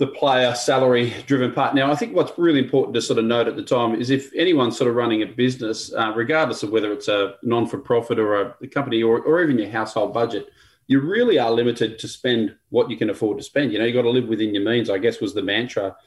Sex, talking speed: male, 260 wpm